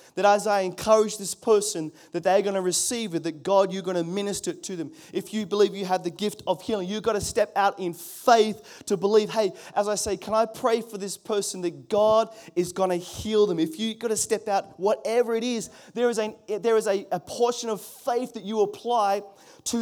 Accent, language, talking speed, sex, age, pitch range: Australian, English, 235 wpm, male, 20-39, 160-210 Hz